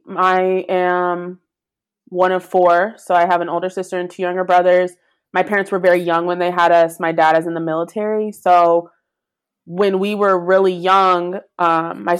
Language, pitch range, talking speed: English, 175-195 Hz, 185 wpm